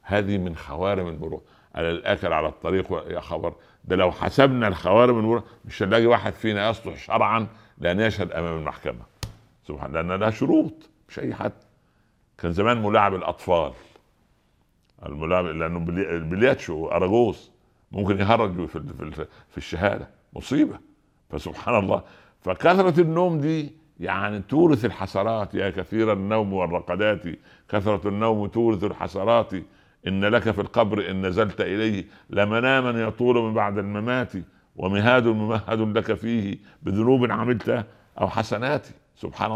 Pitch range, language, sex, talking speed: 90-110 Hz, Arabic, male, 125 wpm